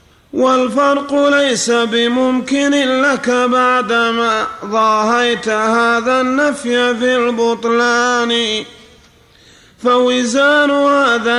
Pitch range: 235-260 Hz